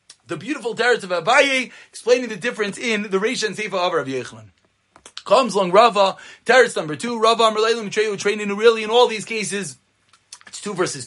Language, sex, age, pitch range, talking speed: English, male, 30-49, 205-275 Hz, 190 wpm